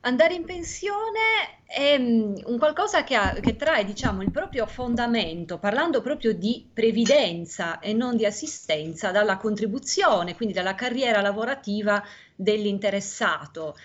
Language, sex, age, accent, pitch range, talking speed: Italian, female, 30-49, native, 195-270 Hz, 115 wpm